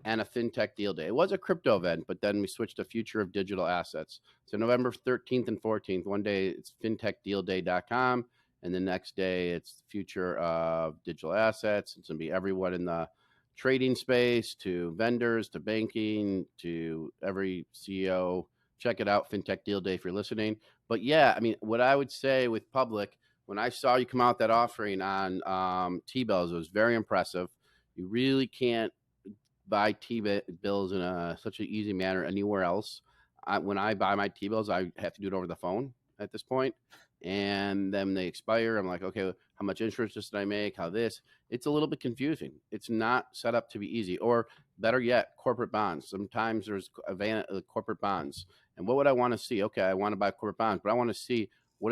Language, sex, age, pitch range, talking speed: English, male, 40-59, 95-115 Hz, 210 wpm